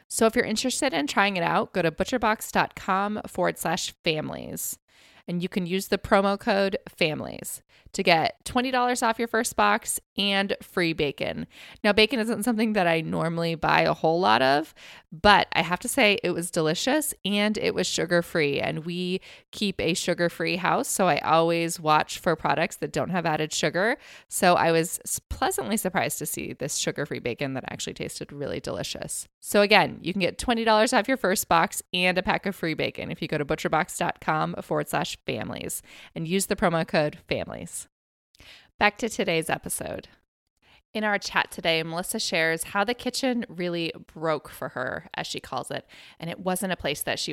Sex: female